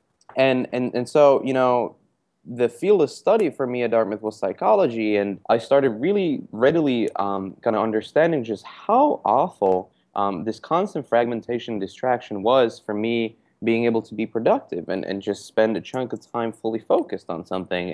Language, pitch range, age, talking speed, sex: English, 105-140 Hz, 20-39, 175 wpm, male